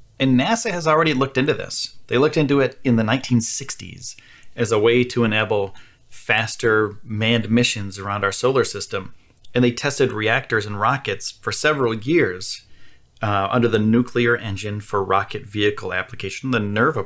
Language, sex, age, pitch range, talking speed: English, male, 30-49, 100-125 Hz, 160 wpm